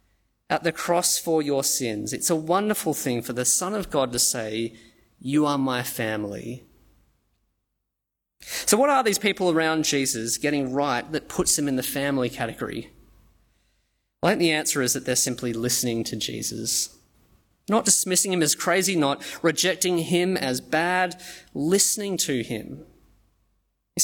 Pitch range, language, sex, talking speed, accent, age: 125-185 Hz, English, male, 155 wpm, Australian, 20-39